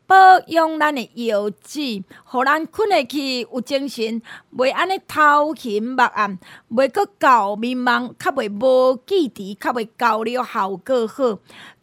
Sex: female